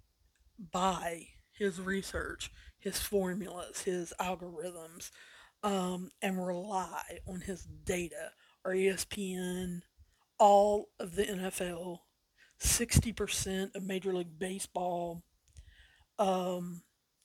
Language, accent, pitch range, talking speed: English, American, 175-195 Hz, 85 wpm